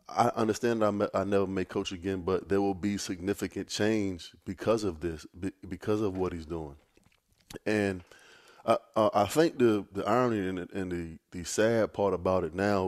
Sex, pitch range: male, 95-105 Hz